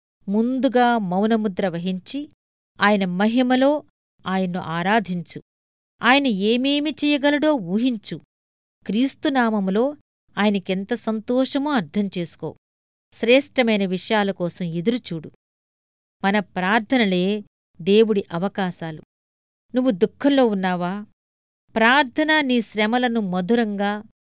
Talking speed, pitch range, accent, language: 75 wpm, 190-245 Hz, native, Telugu